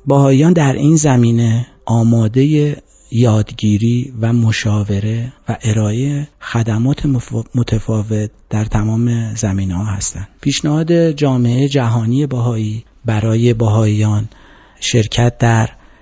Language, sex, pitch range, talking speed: Persian, male, 105-130 Hz, 95 wpm